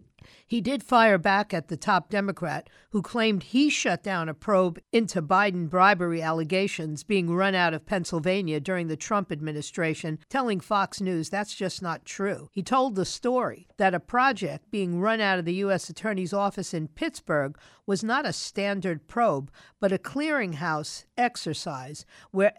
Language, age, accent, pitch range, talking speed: English, 50-69, American, 170-210 Hz, 165 wpm